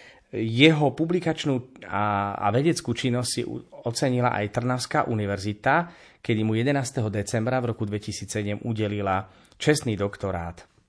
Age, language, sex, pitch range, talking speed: 30-49, Slovak, male, 110-130 Hz, 110 wpm